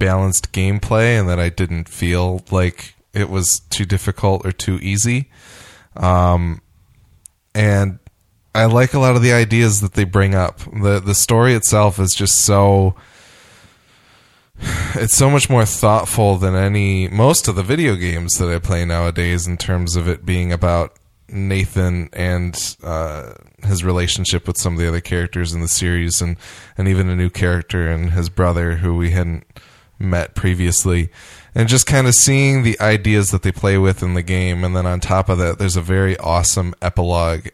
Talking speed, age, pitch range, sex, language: 175 wpm, 20-39, 85-100 Hz, male, English